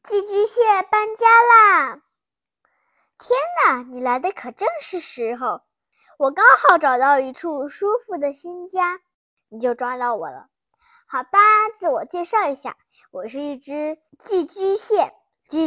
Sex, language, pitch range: male, Chinese, 280-415 Hz